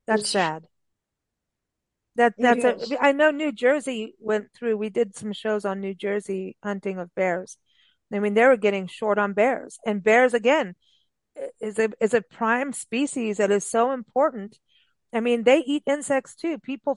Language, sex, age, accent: English, female, 40-59, American